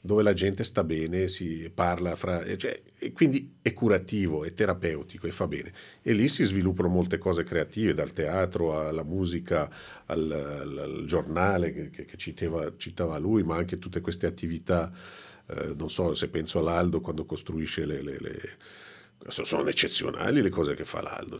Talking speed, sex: 160 wpm, male